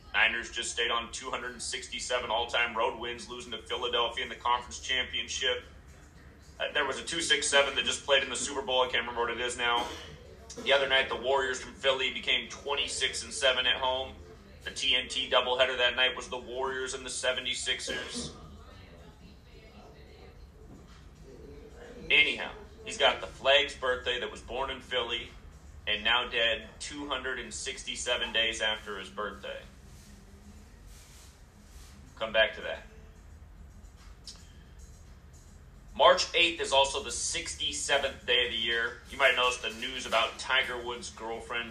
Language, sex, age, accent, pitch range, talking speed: English, male, 30-49, American, 80-125 Hz, 145 wpm